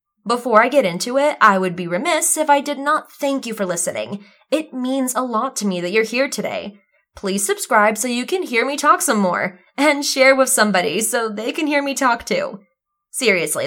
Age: 20-39